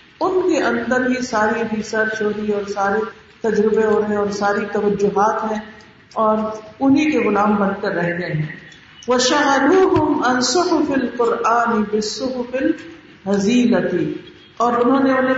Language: Urdu